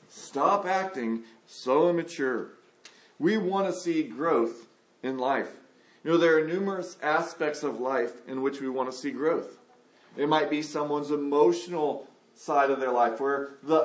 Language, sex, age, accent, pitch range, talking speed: English, male, 40-59, American, 150-195 Hz, 160 wpm